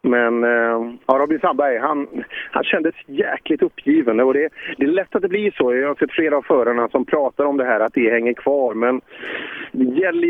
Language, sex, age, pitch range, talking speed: Swedish, male, 40-59, 125-180 Hz, 215 wpm